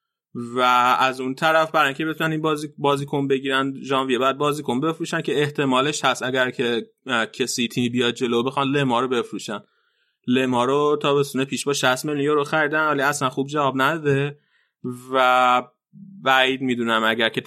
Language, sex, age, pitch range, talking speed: Persian, male, 20-39, 120-150 Hz, 160 wpm